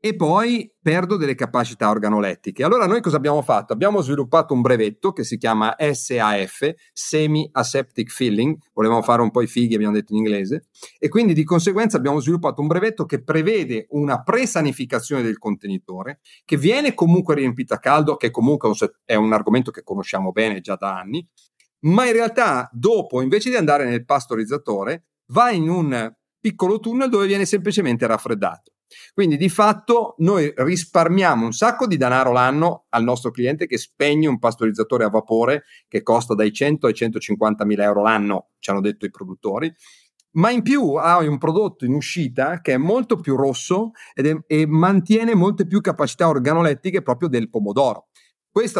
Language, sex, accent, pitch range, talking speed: Italian, male, native, 110-175 Hz, 170 wpm